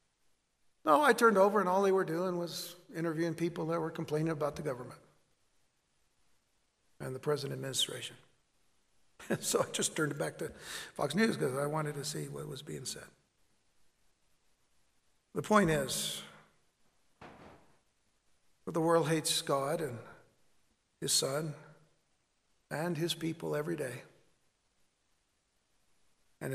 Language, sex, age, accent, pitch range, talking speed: English, male, 60-79, American, 135-170 Hz, 130 wpm